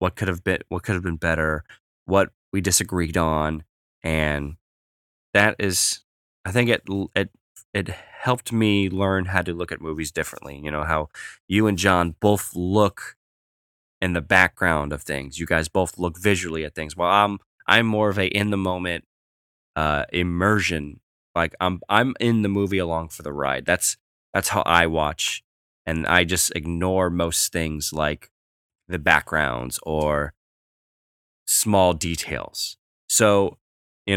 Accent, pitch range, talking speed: American, 75-95 Hz, 160 wpm